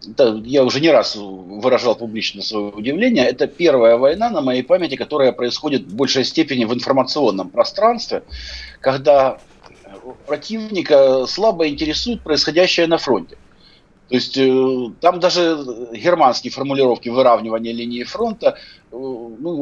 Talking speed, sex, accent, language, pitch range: 120 wpm, male, native, Russian, 115-165 Hz